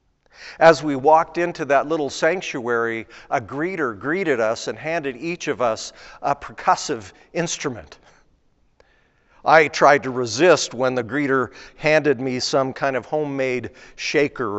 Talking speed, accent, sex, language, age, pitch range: 135 wpm, American, male, English, 50-69, 130-160 Hz